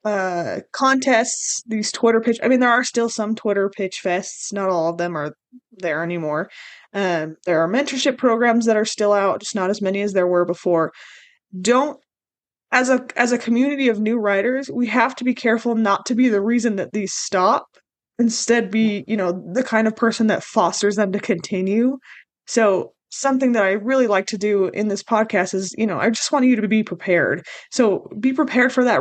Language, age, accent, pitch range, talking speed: English, 20-39, American, 195-240 Hz, 205 wpm